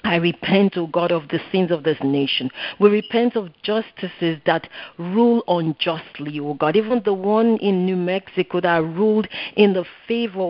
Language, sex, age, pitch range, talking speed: English, female, 50-69, 170-215 Hz, 170 wpm